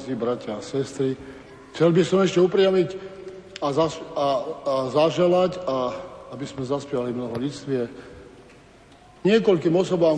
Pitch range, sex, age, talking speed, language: 135-170 Hz, male, 50-69, 125 wpm, Slovak